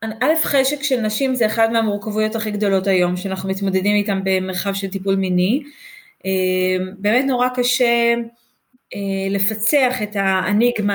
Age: 30-49